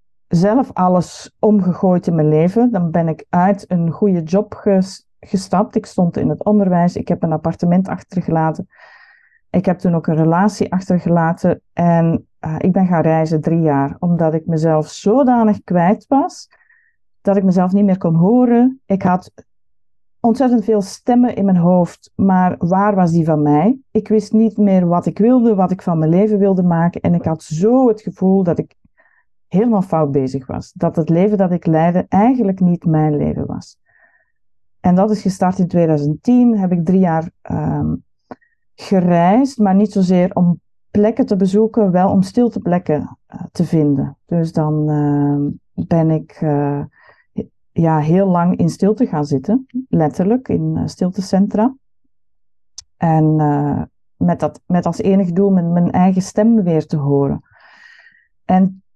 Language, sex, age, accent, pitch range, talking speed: Dutch, female, 40-59, Dutch, 165-210 Hz, 165 wpm